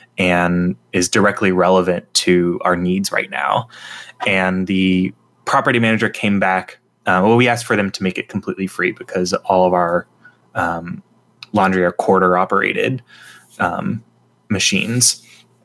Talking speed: 135 wpm